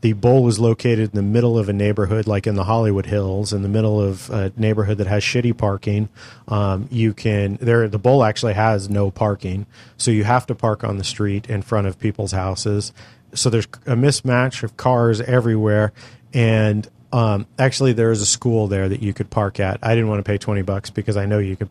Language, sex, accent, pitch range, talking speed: English, male, American, 105-120 Hz, 220 wpm